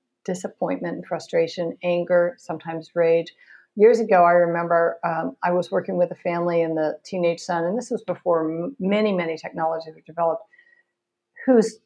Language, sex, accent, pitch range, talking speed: English, female, American, 165-200 Hz, 155 wpm